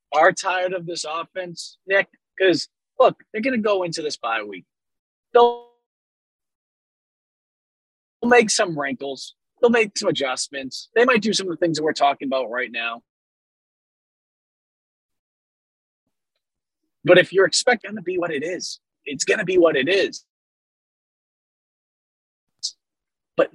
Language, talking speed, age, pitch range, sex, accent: English, 140 wpm, 30-49, 165-240 Hz, male, American